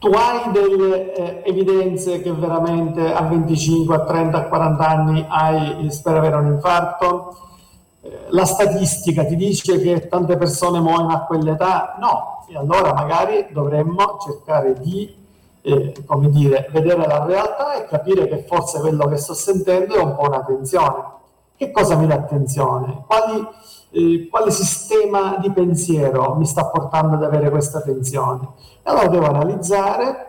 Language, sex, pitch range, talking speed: Italian, male, 145-185 Hz, 145 wpm